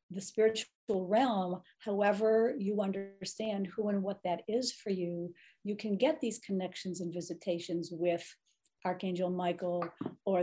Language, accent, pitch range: English, American, 180-220 Hz